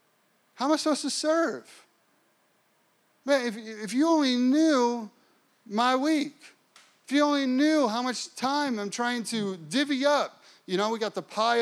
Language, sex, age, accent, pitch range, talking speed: English, male, 30-49, American, 185-235 Hz, 165 wpm